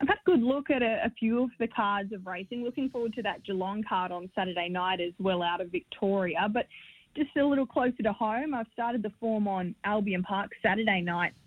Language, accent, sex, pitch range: English, Australian, female, 190-230 Hz